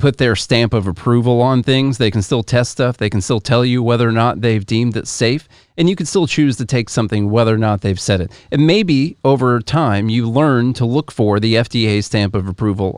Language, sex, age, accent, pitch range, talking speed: English, male, 40-59, American, 105-130 Hz, 240 wpm